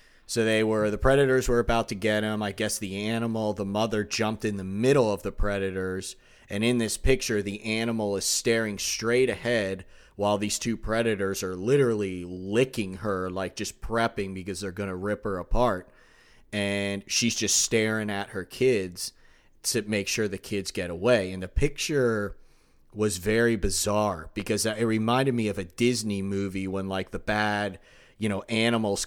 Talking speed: 180 wpm